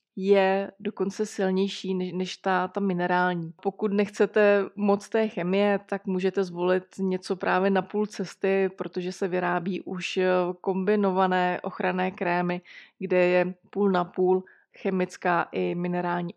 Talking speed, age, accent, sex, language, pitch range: 130 wpm, 20-39, native, female, Czech, 185-210 Hz